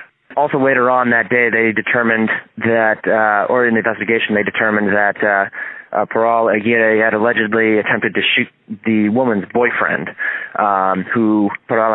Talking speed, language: 155 wpm, English